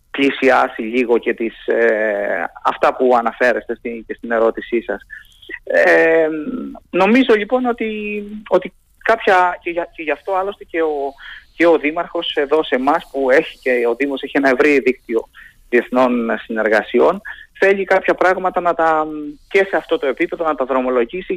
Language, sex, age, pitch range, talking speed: Greek, male, 30-49, 120-170 Hz, 160 wpm